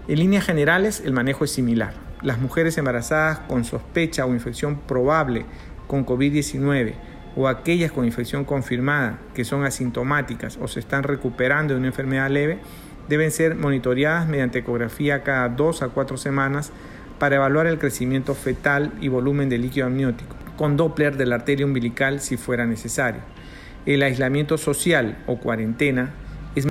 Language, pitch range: Spanish, 125-145 Hz